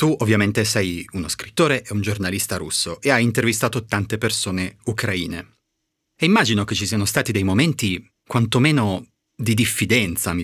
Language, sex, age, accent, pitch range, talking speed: Italian, male, 30-49, native, 95-120 Hz, 155 wpm